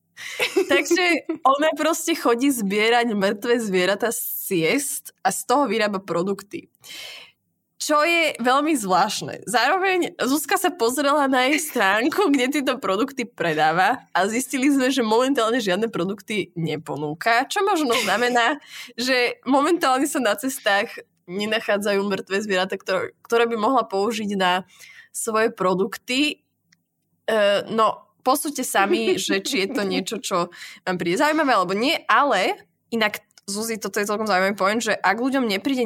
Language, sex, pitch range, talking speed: Slovak, female, 195-260 Hz, 135 wpm